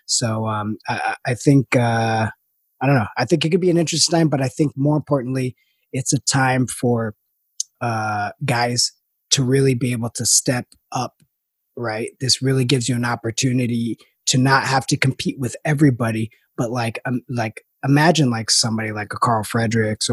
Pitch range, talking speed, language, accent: 110-135 Hz, 180 wpm, English, American